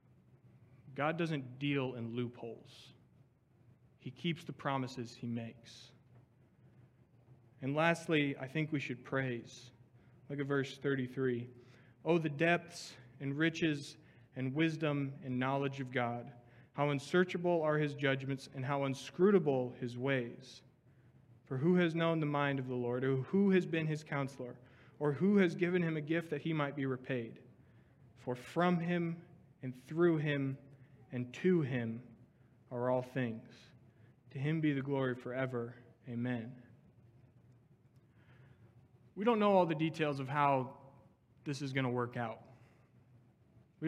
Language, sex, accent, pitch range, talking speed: English, male, American, 125-150 Hz, 140 wpm